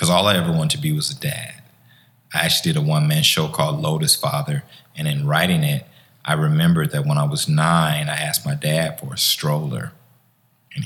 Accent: American